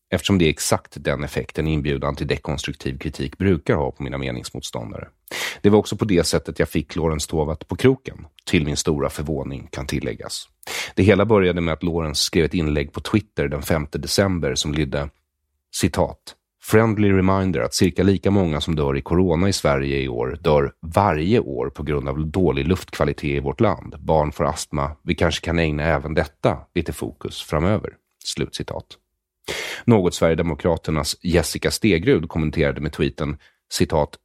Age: 30-49